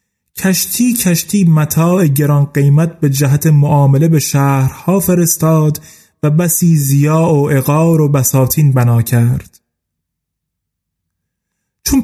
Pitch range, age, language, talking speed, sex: 135-175 Hz, 30-49, Persian, 105 wpm, male